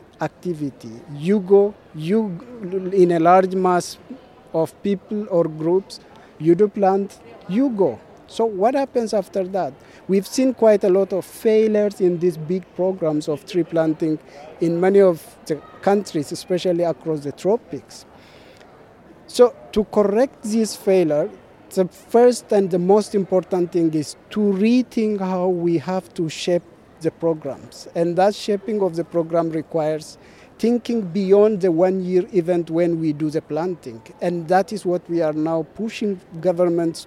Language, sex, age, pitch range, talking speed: English, male, 50-69, 165-200 Hz, 150 wpm